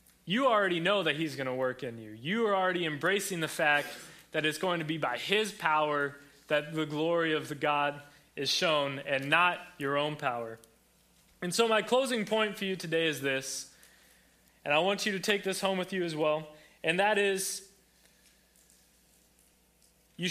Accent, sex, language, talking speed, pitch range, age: American, male, English, 185 wpm, 145-190 Hz, 20-39